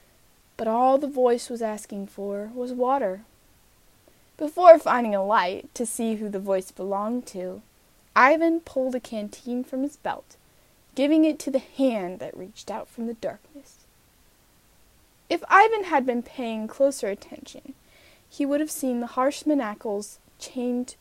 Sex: female